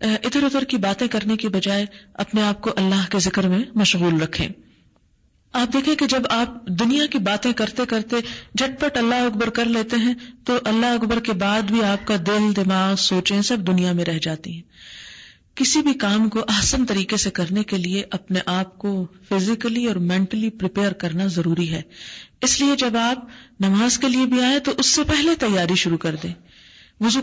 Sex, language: female, Urdu